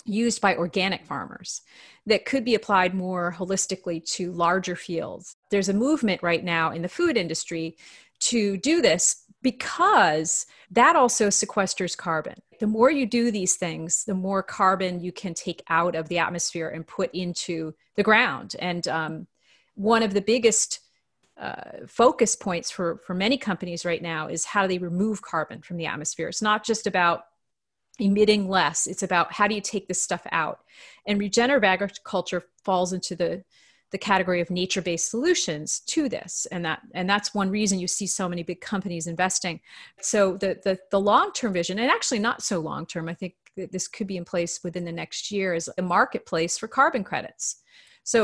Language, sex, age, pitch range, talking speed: English, female, 30-49, 175-215 Hz, 180 wpm